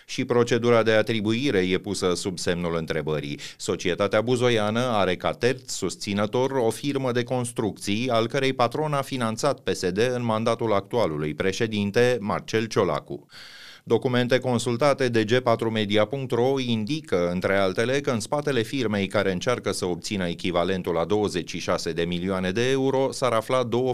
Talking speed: 140 wpm